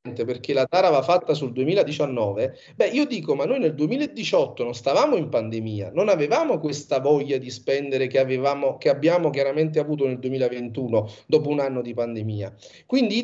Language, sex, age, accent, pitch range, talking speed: Italian, male, 40-59, native, 130-205 Hz, 175 wpm